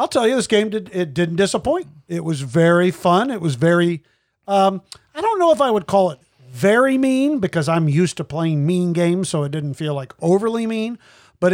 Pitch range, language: 150-190 Hz, English